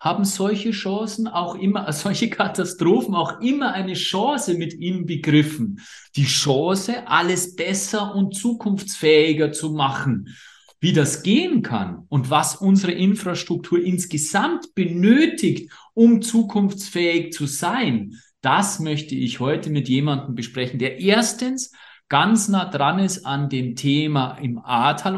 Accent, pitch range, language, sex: German, 150-200 Hz, German, male